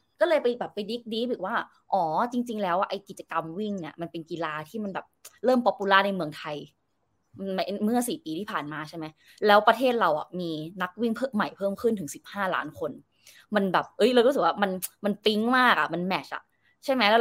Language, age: Thai, 20-39